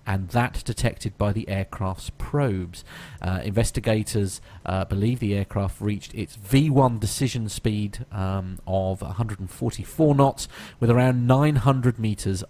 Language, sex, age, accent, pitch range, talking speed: English, male, 40-59, British, 95-125 Hz, 125 wpm